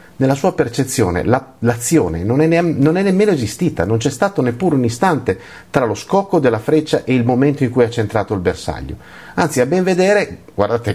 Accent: native